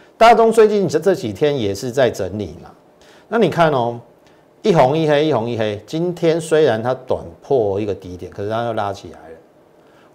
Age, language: 50-69, Chinese